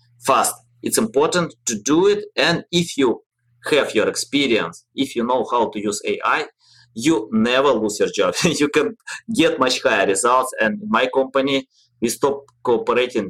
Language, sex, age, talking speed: English, male, 20-39, 165 wpm